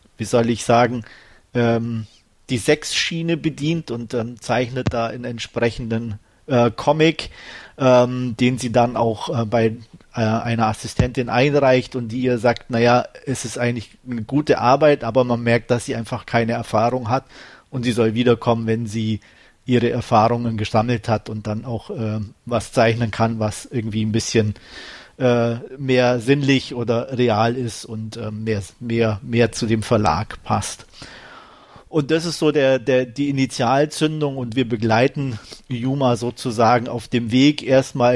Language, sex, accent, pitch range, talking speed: German, male, German, 115-135 Hz, 155 wpm